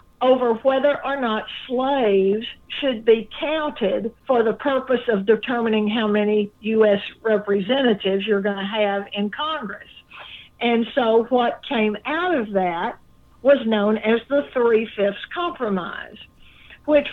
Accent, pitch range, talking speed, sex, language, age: American, 230-280 Hz, 130 wpm, female, English, 50-69